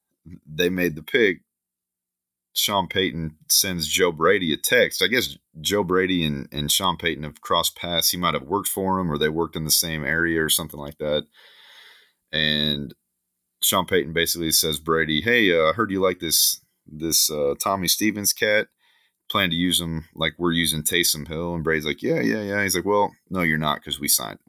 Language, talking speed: English, 200 wpm